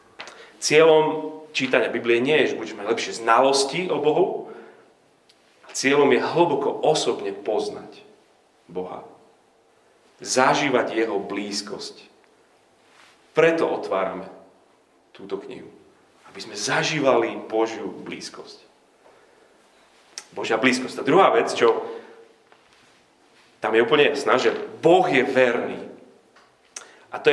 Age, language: 40-59, Slovak